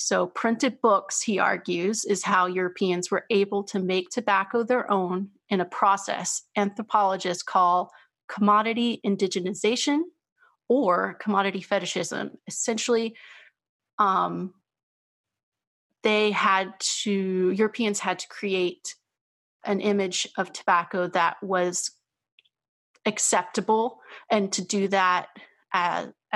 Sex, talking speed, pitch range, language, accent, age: female, 105 wpm, 185-215 Hz, English, American, 30-49